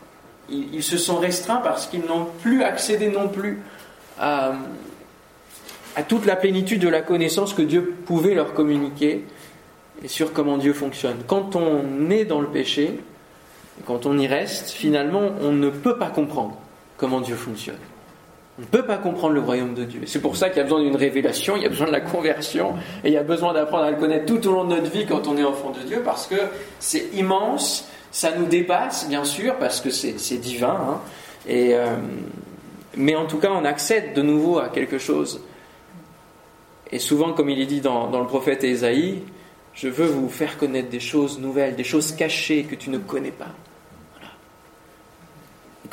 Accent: French